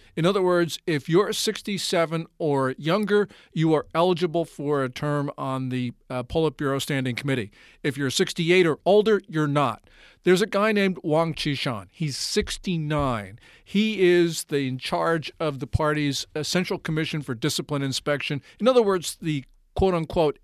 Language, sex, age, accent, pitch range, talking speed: English, male, 50-69, American, 140-180 Hz, 160 wpm